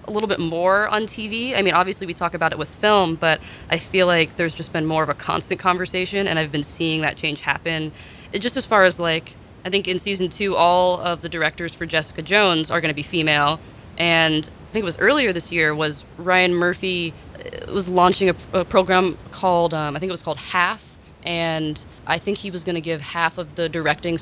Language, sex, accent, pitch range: English, female, American, 155-185 Hz